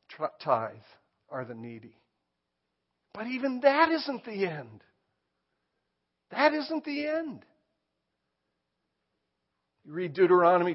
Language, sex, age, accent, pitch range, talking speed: English, male, 60-79, American, 120-190 Hz, 95 wpm